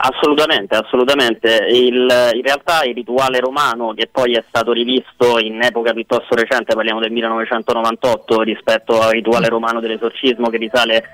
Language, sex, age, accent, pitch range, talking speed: Italian, male, 20-39, native, 115-125 Hz, 145 wpm